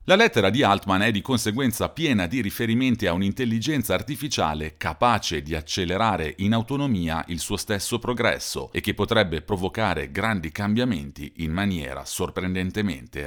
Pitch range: 80-110 Hz